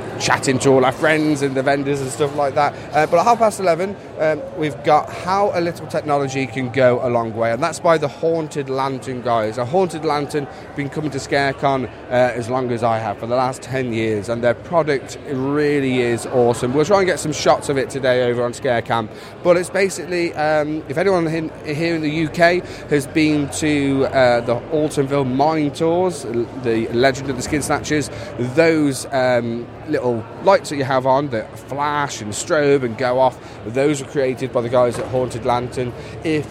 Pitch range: 125-160 Hz